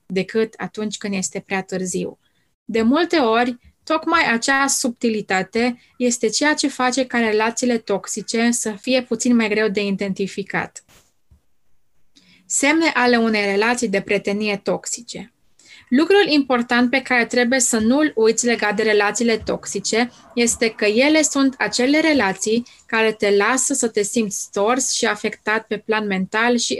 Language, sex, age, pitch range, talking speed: Romanian, female, 20-39, 215-260 Hz, 145 wpm